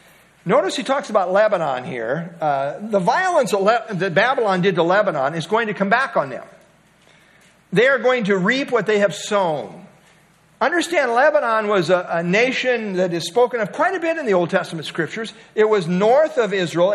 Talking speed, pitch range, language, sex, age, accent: 190 wpm, 175-230 Hz, English, male, 50-69, American